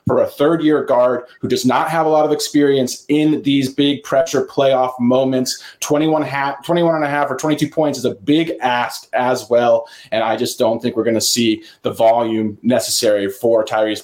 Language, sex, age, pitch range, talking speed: English, male, 30-49, 125-145 Hz, 205 wpm